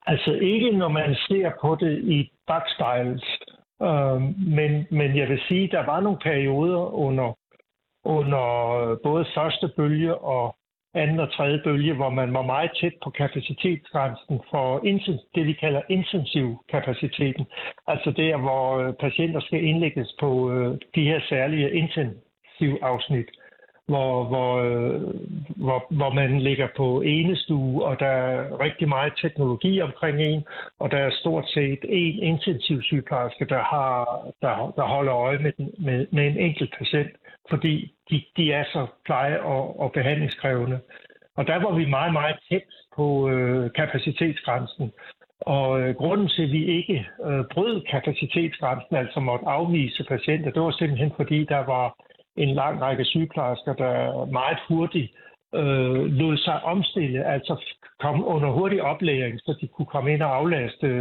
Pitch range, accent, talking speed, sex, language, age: 130-160 Hz, native, 150 wpm, male, Danish, 60-79